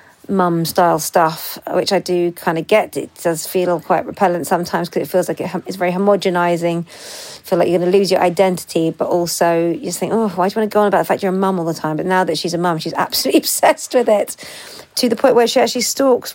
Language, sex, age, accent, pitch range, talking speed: English, female, 40-59, British, 175-220 Hz, 260 wpm